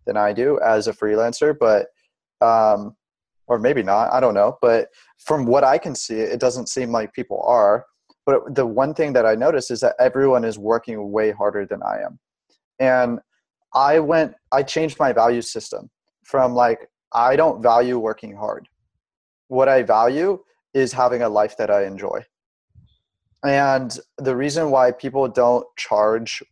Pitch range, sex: 110-130 Hz, male